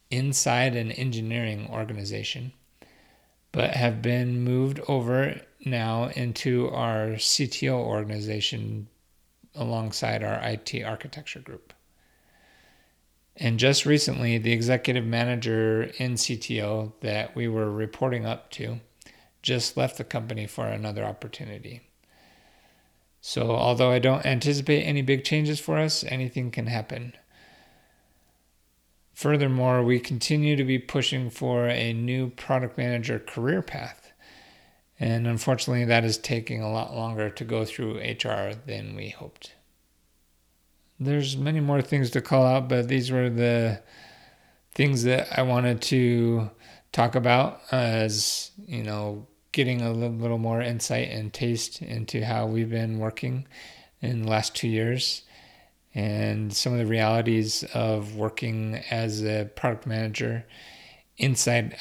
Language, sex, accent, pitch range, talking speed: English, male, American, 110-130 Hz, 125 wpm